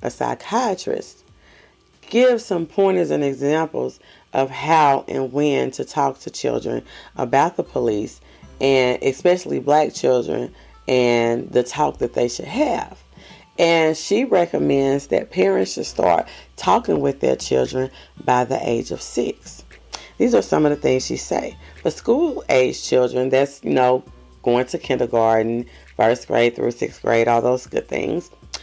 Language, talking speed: English, 150 wpm